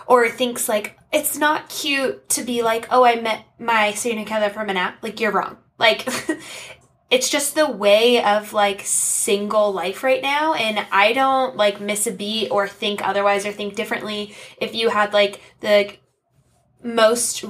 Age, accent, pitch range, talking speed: 10-29, American, 195-235 Hz, 180 wpm